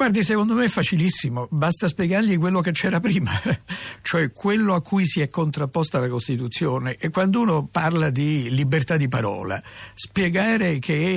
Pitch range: 125-165 Hz